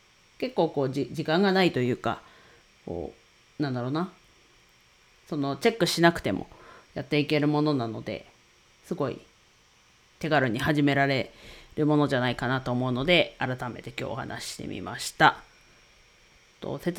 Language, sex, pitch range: Japanese, female, 130-170 Hz